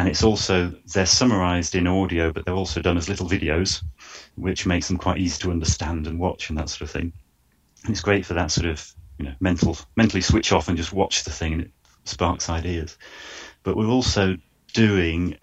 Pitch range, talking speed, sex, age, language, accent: 85-100 Hz, 210 wpm, male, 30-49, English, British